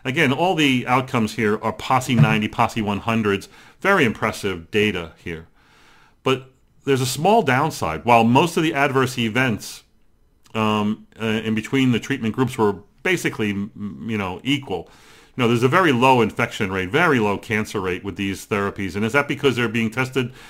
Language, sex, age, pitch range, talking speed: English, male, 40-59, 110-135 Hz, 175 wpm